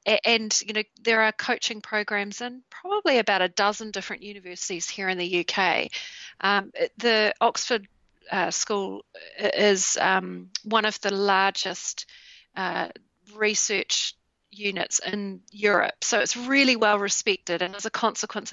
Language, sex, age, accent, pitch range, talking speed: English, female, 40-59, Australian, 195-230 Hz, 140 wpm